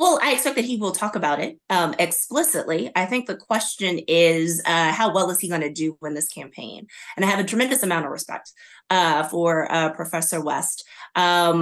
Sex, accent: female, American